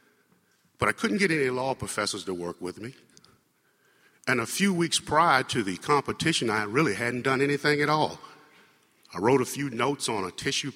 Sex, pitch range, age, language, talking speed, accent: male, 105-140 Hz, 50-69, English, 190 wpm, American